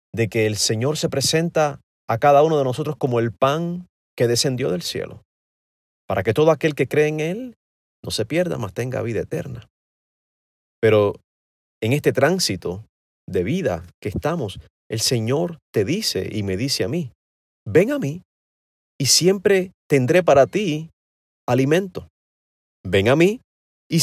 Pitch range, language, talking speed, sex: 105-150 Hz, Spanish, 155 wpm, male